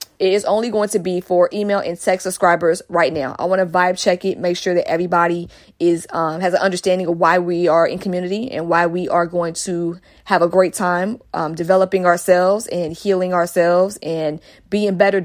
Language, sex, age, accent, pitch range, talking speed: English, female, 20-39, American, 175-205 Hz, 210 wpm